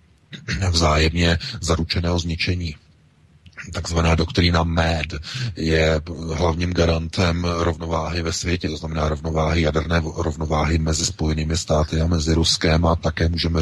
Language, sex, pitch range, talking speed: Czech, male, 80-95 Hz, 115 wpm